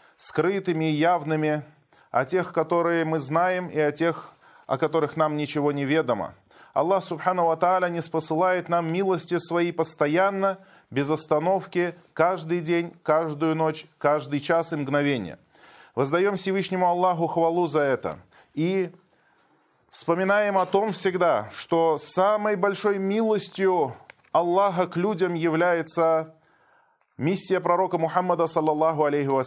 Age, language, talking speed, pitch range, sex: 20-39, Russian, 120 wpm, 160-185 Hz, male